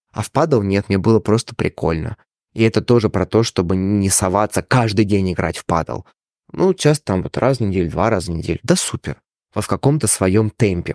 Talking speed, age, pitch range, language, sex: 215 wpm, 20-39, 100-120 Hz, Russian, male